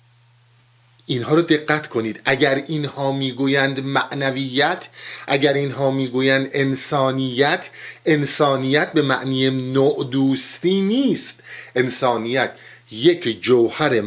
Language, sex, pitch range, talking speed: Persian, male, 120-150 Hz, 90 wpm